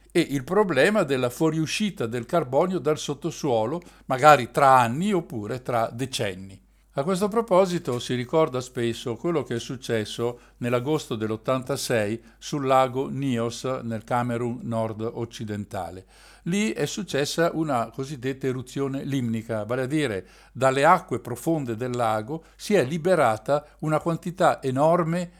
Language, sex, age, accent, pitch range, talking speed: Italian, male, 60-79, native, 115-160 Hz, 130 wpm